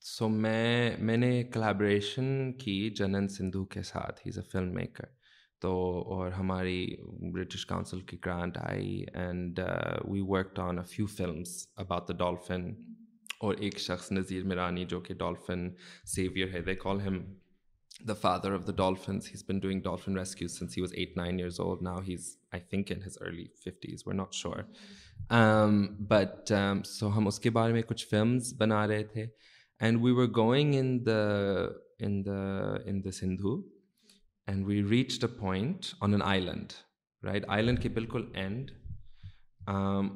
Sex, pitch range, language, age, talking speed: male, 95-115 Hz, Urdu, 20-39, 165 wpm